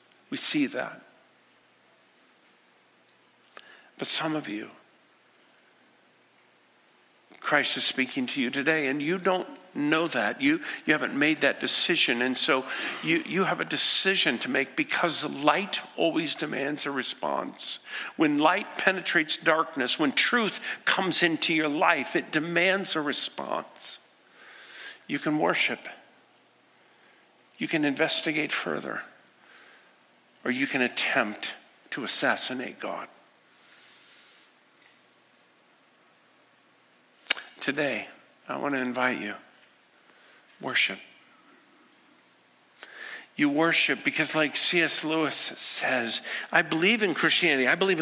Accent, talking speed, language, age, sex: American, 110 wpm, English, 50-69, male